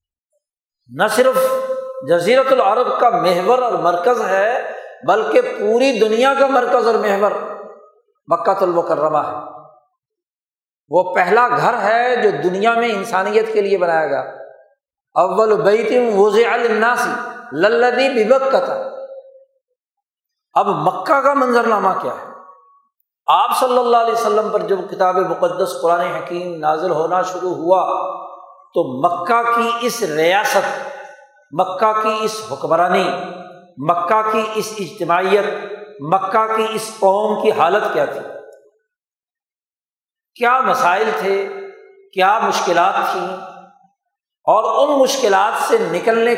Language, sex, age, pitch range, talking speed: Urdu, male, 60-79, 180-260 Hz, 115 wpm